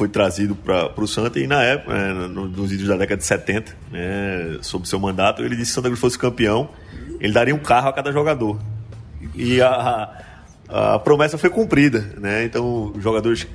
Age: 20-39